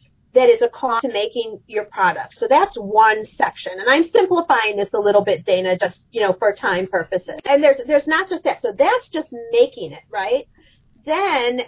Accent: American